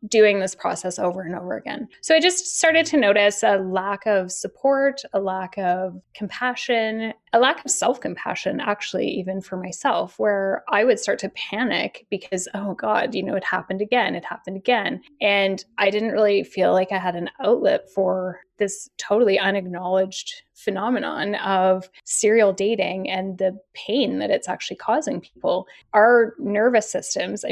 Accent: American